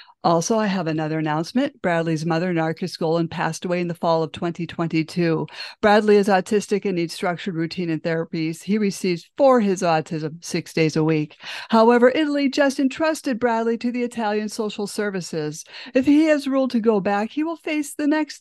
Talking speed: 185 wpm